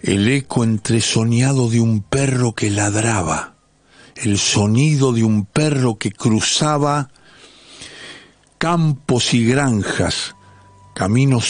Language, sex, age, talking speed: Spanish, male, 60-79, 100 wpm